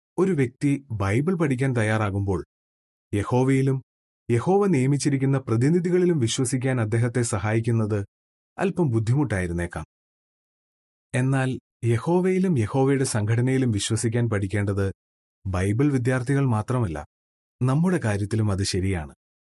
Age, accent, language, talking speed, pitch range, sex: 30-49, native, Malayalam, 85 wpm, 95-130 Hz, male